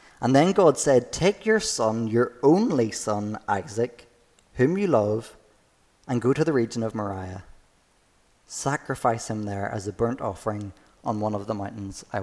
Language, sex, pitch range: English, male, 100-125 Hz